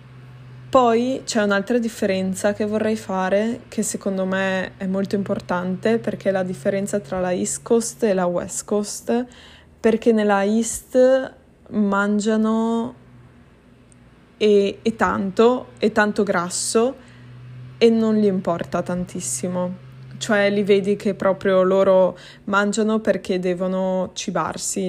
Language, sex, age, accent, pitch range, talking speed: Italian, female, 20-39, native, 180-215 Hz, 120 wpm